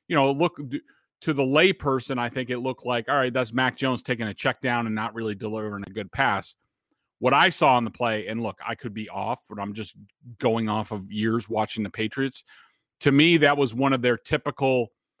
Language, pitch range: English, 120-155 Hz